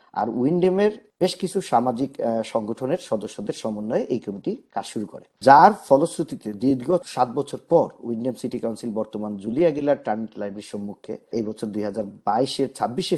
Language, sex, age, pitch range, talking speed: Bengali, male, 50-69, 115-165 Hz, 115 wpm